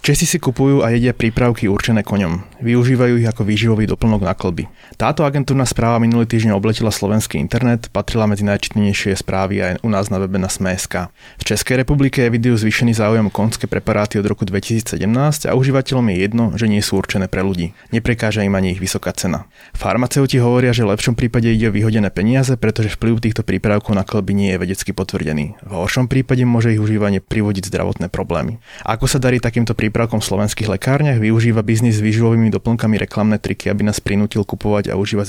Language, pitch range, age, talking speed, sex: Slovak, 100-120 Hz, 30-49, 190 wpm, male